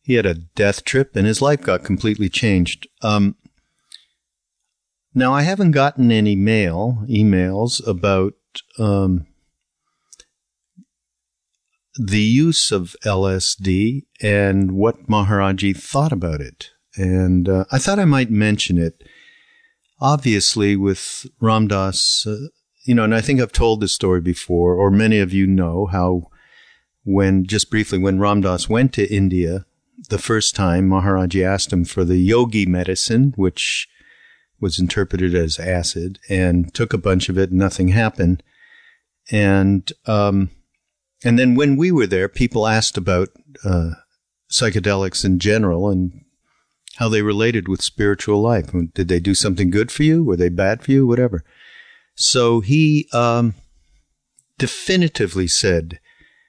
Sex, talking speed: male, 135 wpm